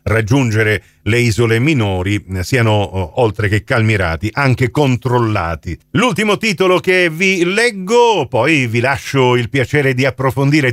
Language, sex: Italian, male